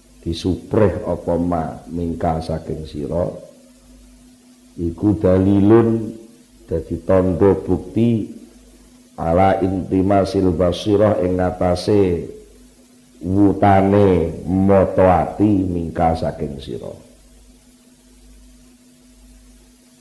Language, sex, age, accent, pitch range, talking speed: Indonesian, male, 50-69, native, 90-125 Hz, 65 wpm